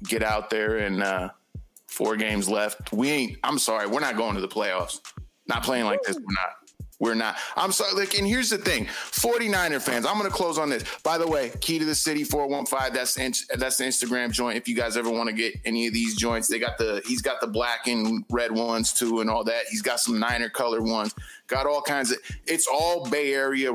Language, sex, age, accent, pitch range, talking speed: English, male, 30-49, American, 110-150 Hz, 240 wpm